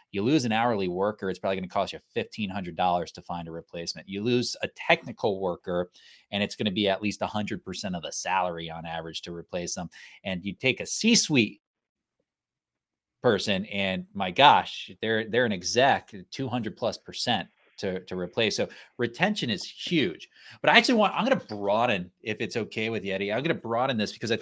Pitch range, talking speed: 95-120 Hz, 205 wpm